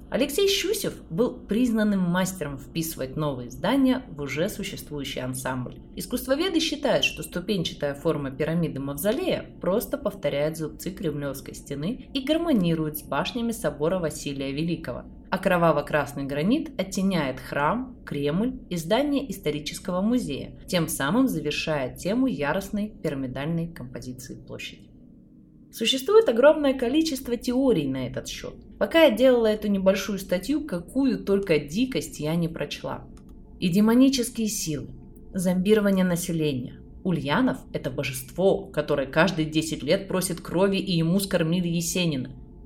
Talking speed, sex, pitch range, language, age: 120 wpm, female, 145-220 Hz, Russian, 20-39